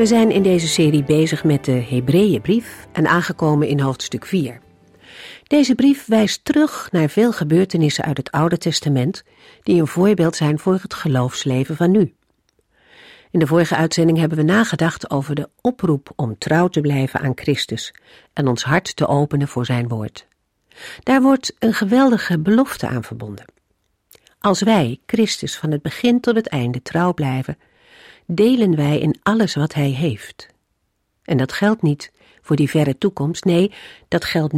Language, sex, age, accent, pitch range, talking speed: Dutch, female, 50-69, Dutch, 140-200 Hz, 165 wpm